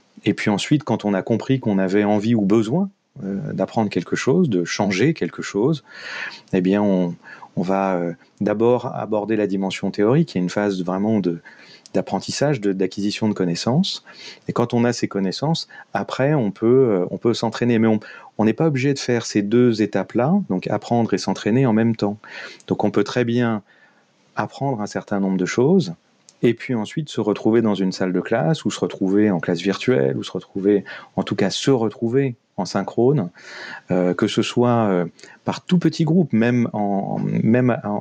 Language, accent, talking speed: French, French, 190 wpm